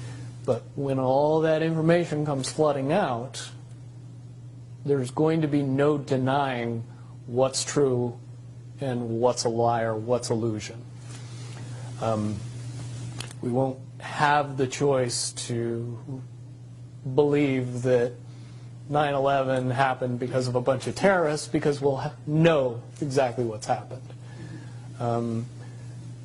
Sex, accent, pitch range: male, American, 120-140 Hz